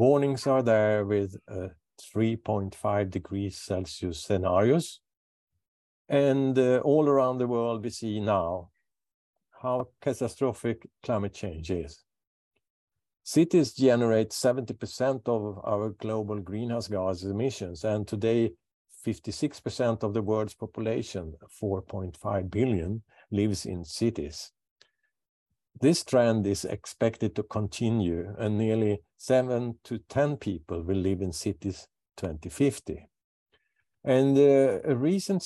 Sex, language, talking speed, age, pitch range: male, English, 110 wpm, 50-69, 100-130 Hz